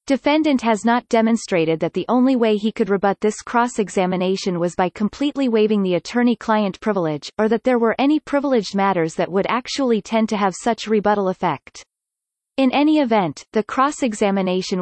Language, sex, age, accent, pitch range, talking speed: English, female, 30-49, American, 190-245 Hz, 165 wpm